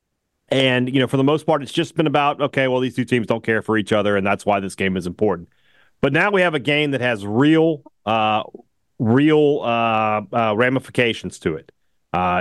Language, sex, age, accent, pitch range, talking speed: English, male, 30-49, American, 105-135 Hz, 220 wpm